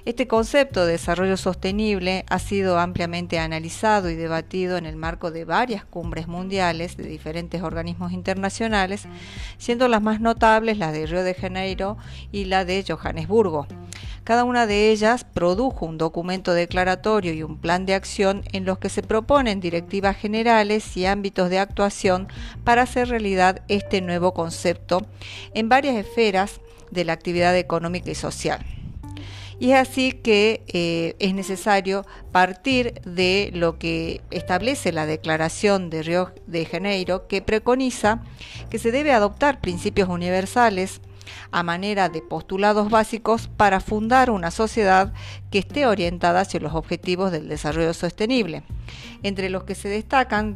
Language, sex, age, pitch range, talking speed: Spanish, female, 40-59, 170-215 Hz, 145 wpm